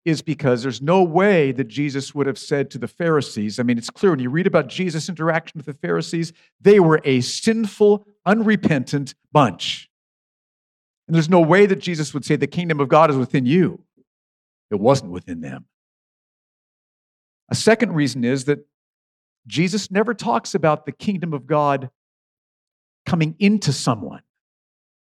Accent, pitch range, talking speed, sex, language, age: American, 130-180 Hz, 160 wpm, male, English, 50-69